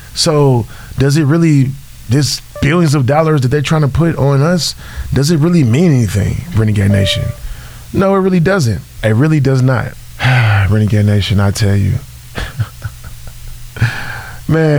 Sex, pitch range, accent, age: male, 110-140 Hz, American, 20-39